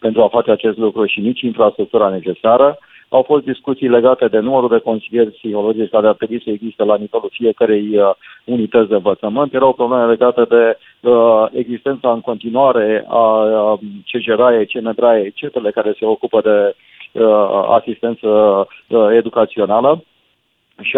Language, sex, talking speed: Romanian, male, 135 wpm